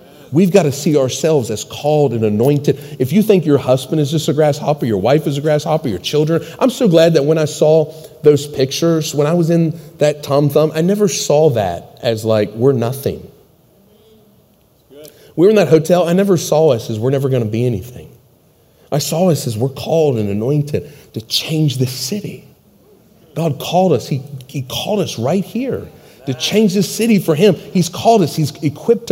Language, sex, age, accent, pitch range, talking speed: English, male, 30-49, American, 135-185 Hz, 200 wpm